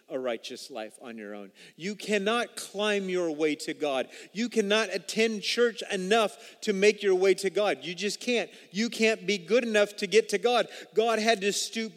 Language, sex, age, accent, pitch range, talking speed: English, male, 40-59, American, 145-225 Hz, 200 wpm